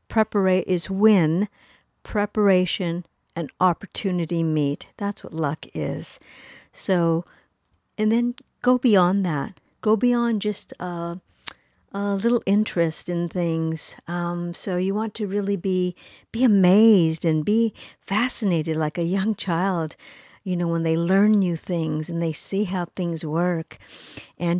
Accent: American